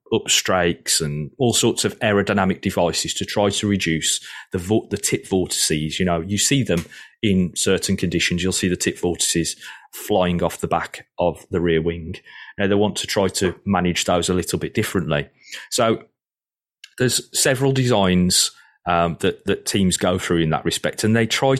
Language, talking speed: English, 175 wpm